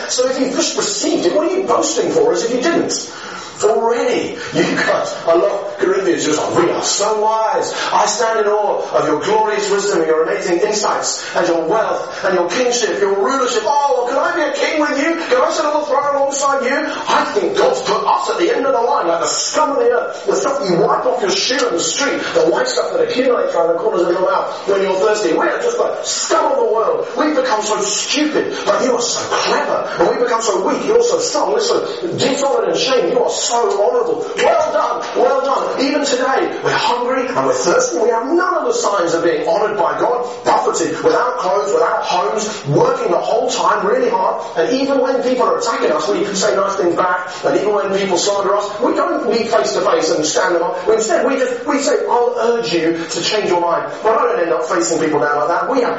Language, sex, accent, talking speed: English, male, British, 240 wpm